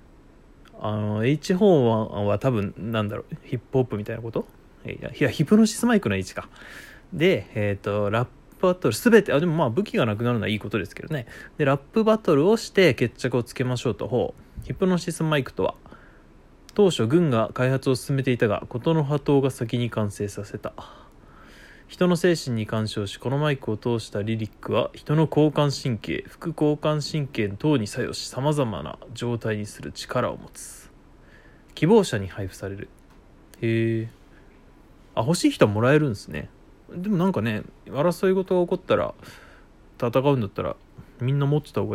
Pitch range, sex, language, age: 105-155 Hz, male, Japanese, 20-39